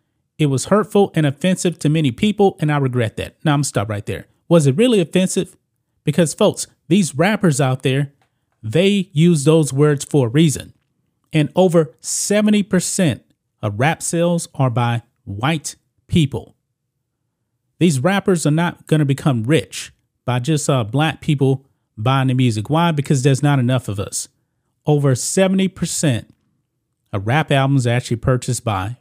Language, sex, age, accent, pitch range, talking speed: English, male, 30-49, American, 125-160 Hz, 165 wpm